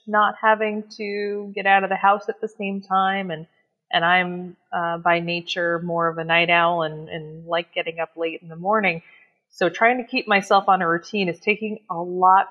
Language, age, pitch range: English, 30-49, 170-200 Hz